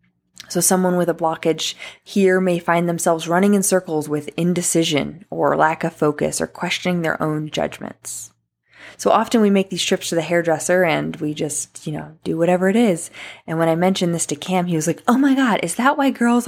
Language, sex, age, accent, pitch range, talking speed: English, female, 20-39, American, 165-210 Hz, 210 wpm